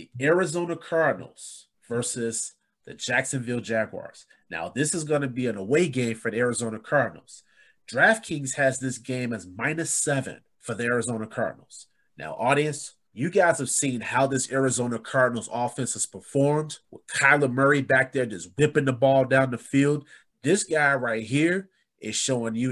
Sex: male